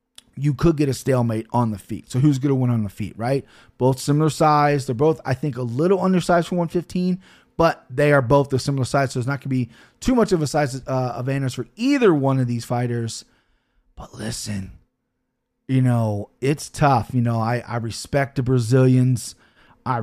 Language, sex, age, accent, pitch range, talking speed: English, male, 30-49, American, 130-170 Hz, 205 wpm